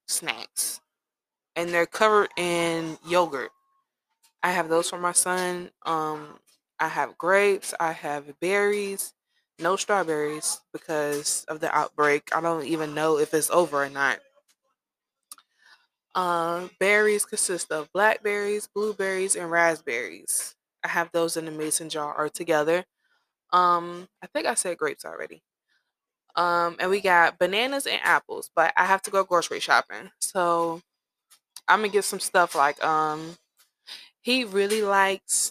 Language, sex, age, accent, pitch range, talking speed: English, female, 20-39, American, 170-210 Hz, 140 wpm